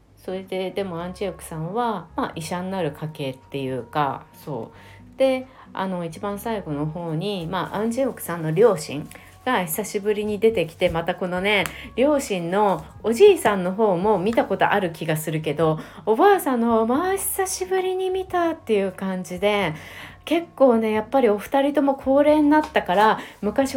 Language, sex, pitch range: Japanese, female, 160-230 Hz